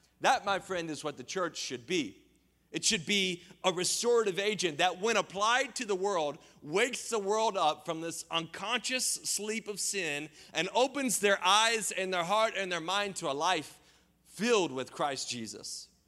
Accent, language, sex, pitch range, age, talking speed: American, English, male, 135-205 Hz, 30-49, 180 wpm